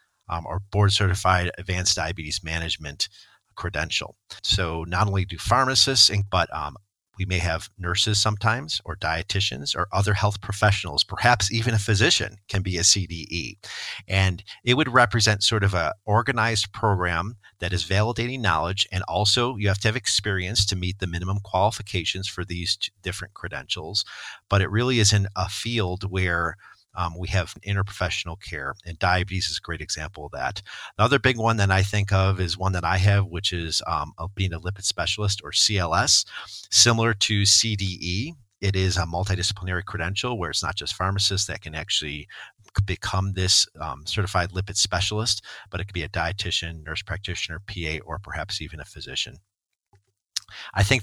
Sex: male